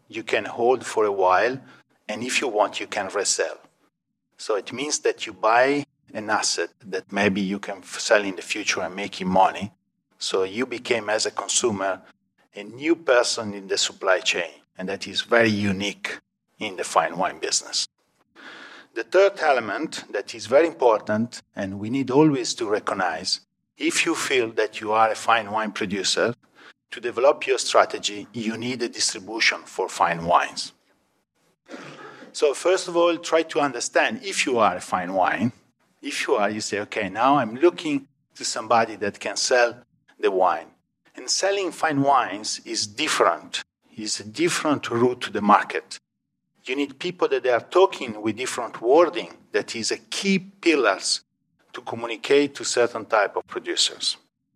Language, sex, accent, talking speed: English, male, Italian, 170 wpm